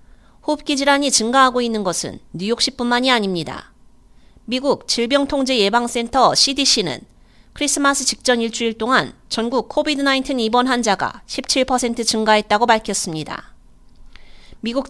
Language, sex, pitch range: Korean, female, 215-265 Hz